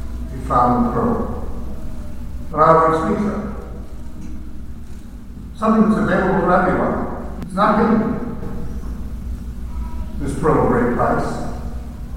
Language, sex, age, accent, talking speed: English, male, 60-79, American, 90 wpm